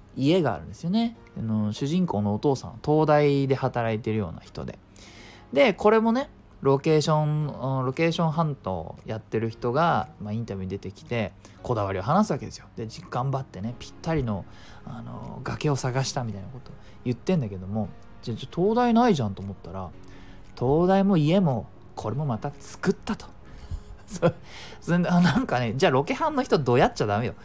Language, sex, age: Japanese, male, 20-39